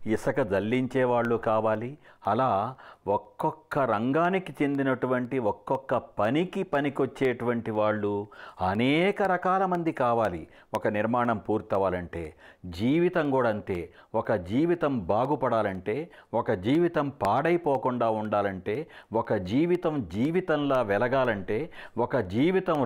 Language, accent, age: English, Indian, 60-79